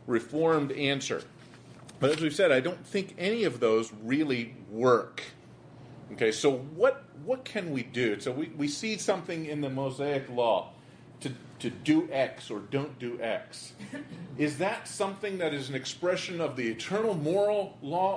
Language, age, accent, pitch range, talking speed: English, 40-59, American, 115-160 Hz, 165 wpm